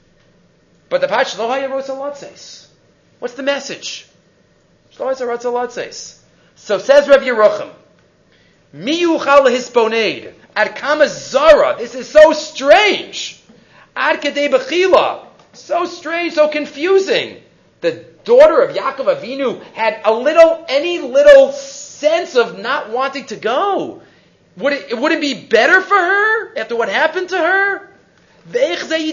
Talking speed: 125 wpm